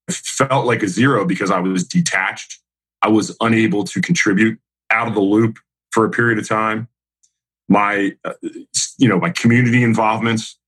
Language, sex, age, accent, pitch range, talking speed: English, male, 30-49, American, 85-125 Hz, 170 wpm